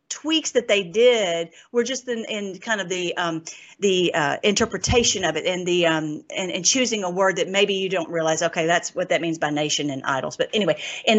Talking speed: 210 wpm